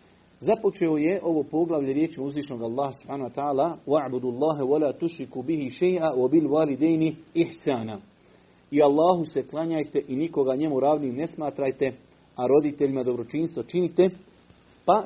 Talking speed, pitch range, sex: 130 wpm, 140-170 Hz, male